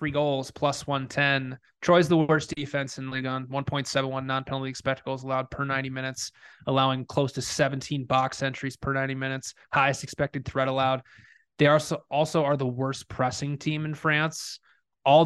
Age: 20-39